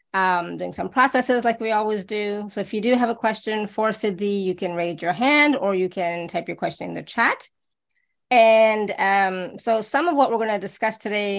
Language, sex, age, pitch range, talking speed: English, female, 30-49, 185-225 Hz, 220 wpm